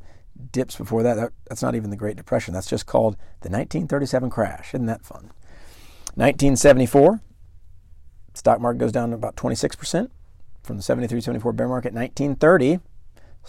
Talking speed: 140 wpm